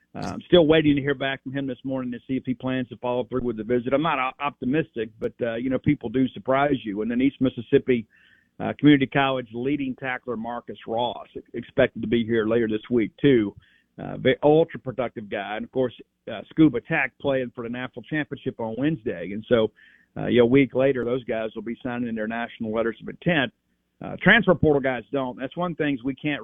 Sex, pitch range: male, 120-140 Hz